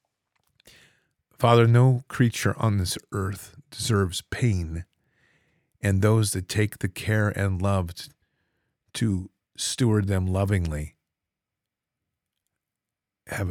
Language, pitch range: English, 95-110 Hz